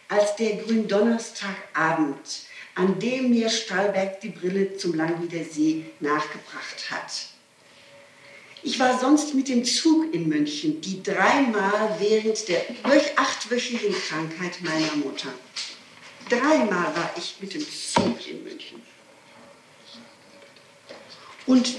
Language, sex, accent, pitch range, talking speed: German, female, German, 175-250 Hz, 115 wpm